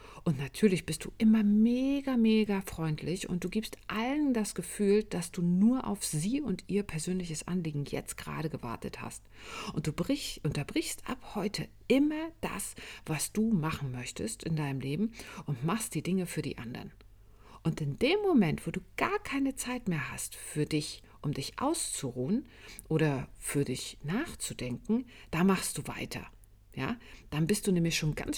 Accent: German